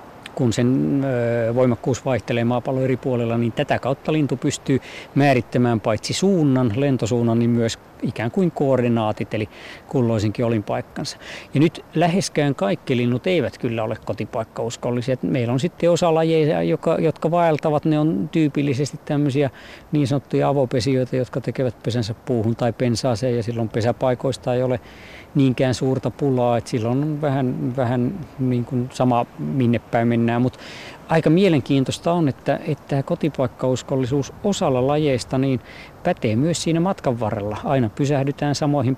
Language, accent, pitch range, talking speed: Finnish, native, 120-150 Hz, 135 wpm